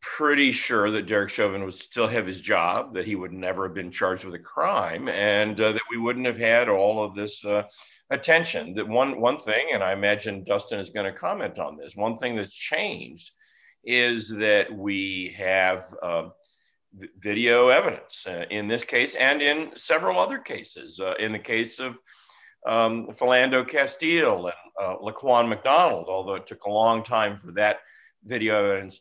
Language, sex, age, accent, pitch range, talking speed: English, male, 50-69, American, 95-125 Hz, 180 wpm